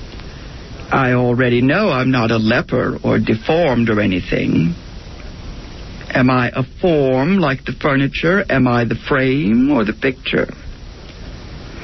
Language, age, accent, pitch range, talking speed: English, 60-79, American, 125-165 Hz, 125 wpm